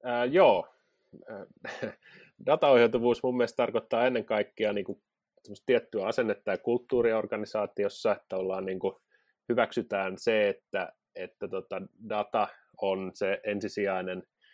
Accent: native